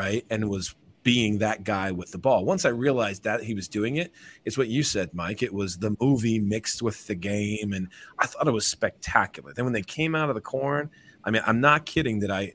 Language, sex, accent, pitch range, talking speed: English, male, American, 95-120 Hz, 245 wpm